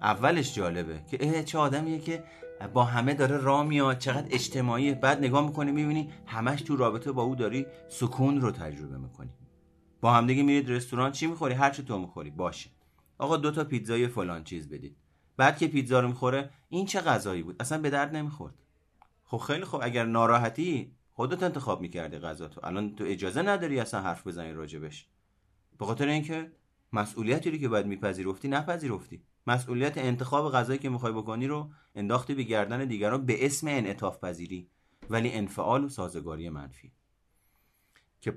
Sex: male